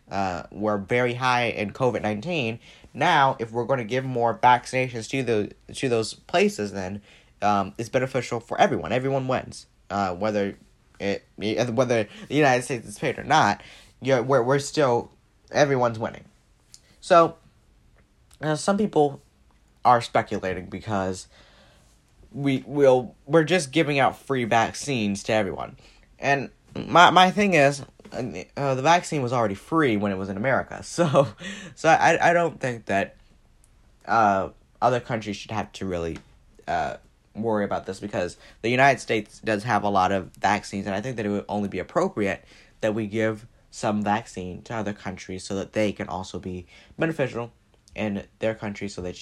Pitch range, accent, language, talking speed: 100-135 Hz, American, English, 165 wpm